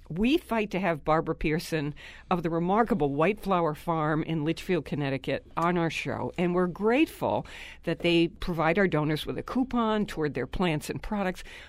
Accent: American